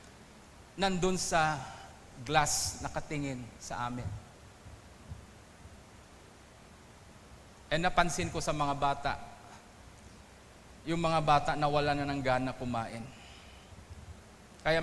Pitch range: 120-195 Hz